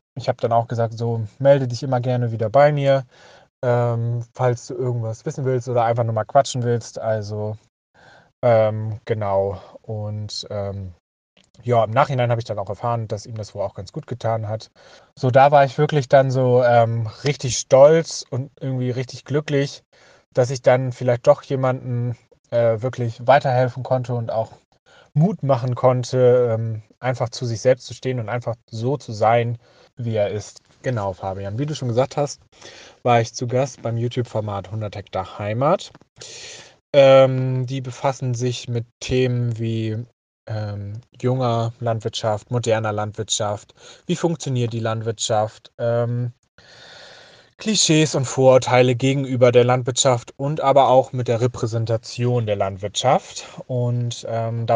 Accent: German